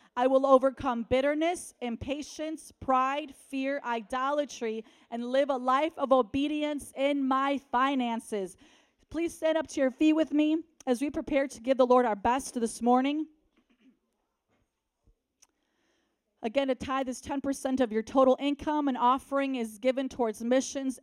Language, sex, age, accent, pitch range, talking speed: English, female, 30-49, American, 235-280 Hz, 145 wpm